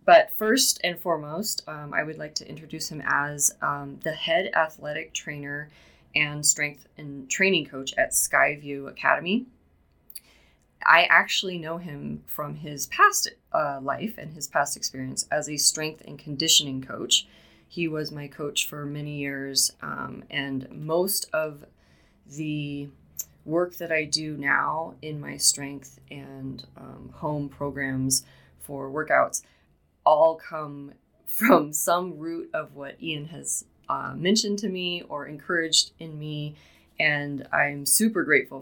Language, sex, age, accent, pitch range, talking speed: English, female, 20-39, American, 140-165 Hz, 140 wpm